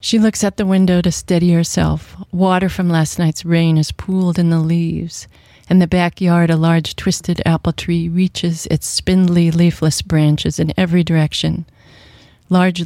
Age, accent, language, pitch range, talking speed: 40-59, American, English, 155-185 Hz, 165 wpm